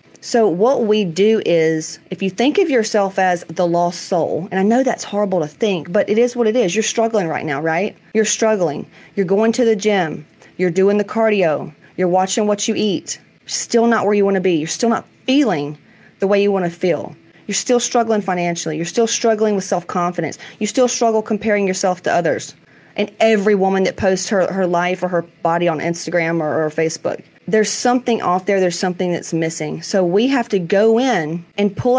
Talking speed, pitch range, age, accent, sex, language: 210 wpm, 180-220 Hz, 30-49, American, female, English